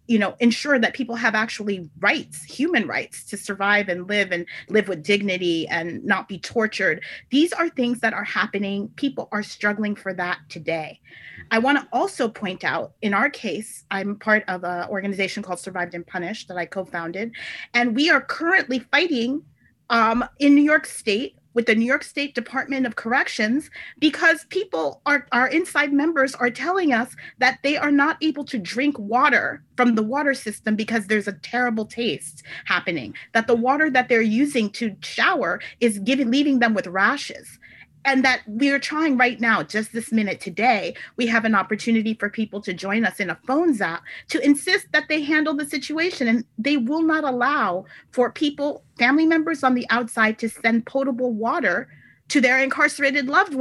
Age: 30-49